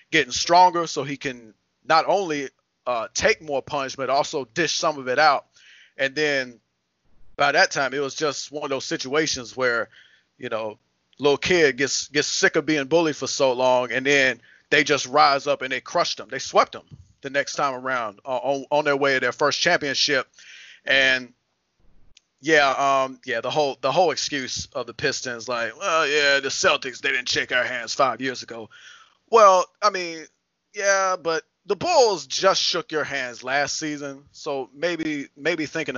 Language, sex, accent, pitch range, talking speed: English, male, American, 130-155 Hz, 185 wpm